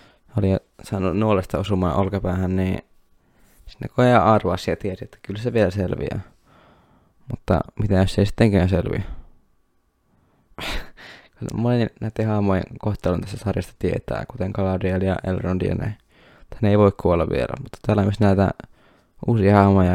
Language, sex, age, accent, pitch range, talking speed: Finnish, male, 20-39, native, 95-105 Hz, 140 wpm